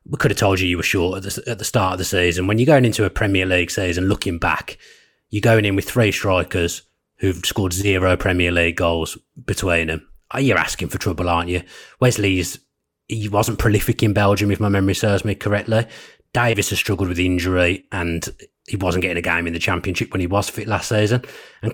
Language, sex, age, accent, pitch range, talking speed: English, male, 20-39, British, 95-110 Hz, 220 wpm